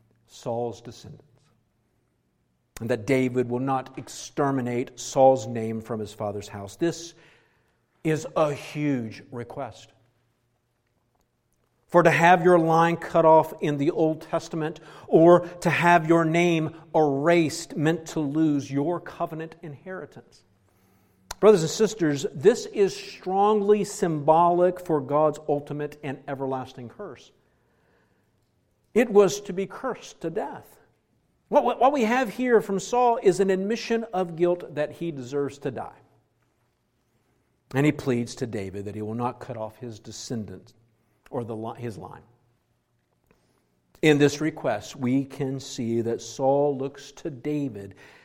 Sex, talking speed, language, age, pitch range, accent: male, 130 wpm, English, 50-69, 115-165 Hz, American